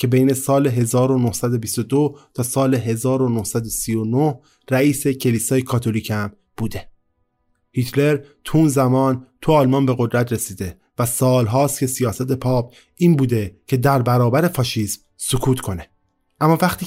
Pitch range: 115-145 Hz